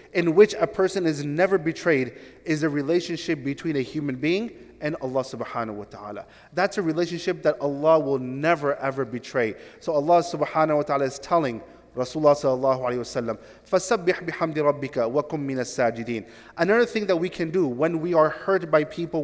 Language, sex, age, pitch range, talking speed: English, male, 30-49, 145-185 Hz, 175 wpm